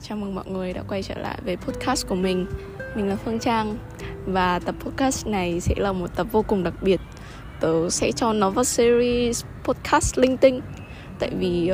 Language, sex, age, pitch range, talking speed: Vietnamese, female, 10-29, 175-220 Hz, 200 wpm